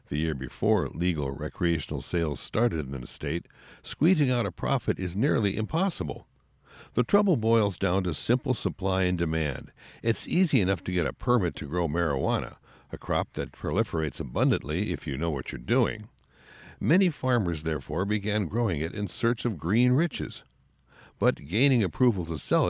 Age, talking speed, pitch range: 60-79, 165 wpm, 85-125 Hz